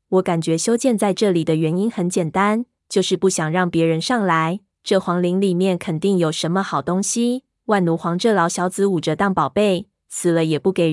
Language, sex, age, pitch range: Chinese, female, 20-39, 170-205 Hz